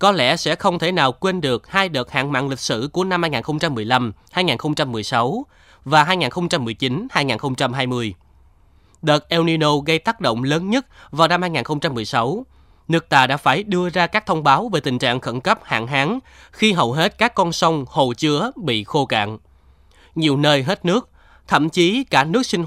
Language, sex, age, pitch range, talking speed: Vietnamese, male, 20-39, 125-170 Hz, 180 wpm